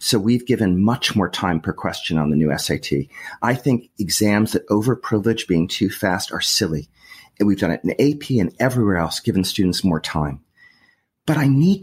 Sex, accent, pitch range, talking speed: male, American, 95-140 Hz, 200 wpm